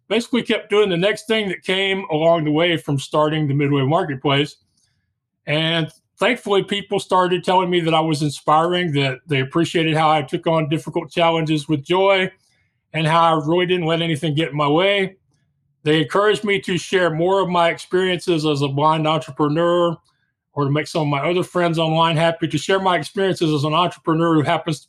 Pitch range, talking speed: 150-185 Hz, 195 wpm